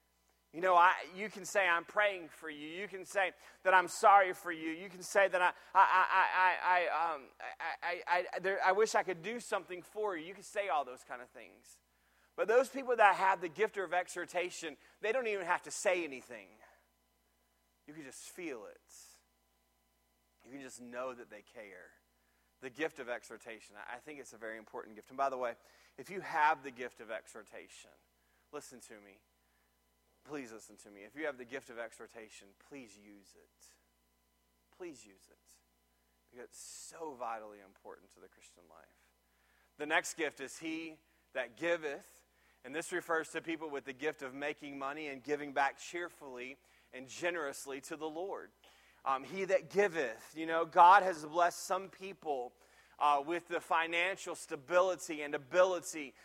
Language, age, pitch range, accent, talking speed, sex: English, 30-49, 115-180 Hz, American, 175 wpm, male